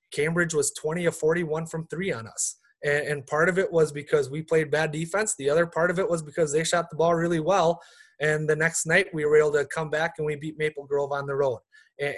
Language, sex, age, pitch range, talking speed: English, male, 20-39, 140-165 Hz, 255 wpm